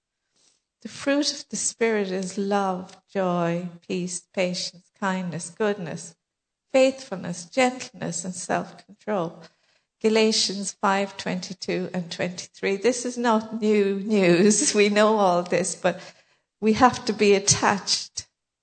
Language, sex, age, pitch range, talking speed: English, female, 50-69, 185-225 Hz, 115 wpm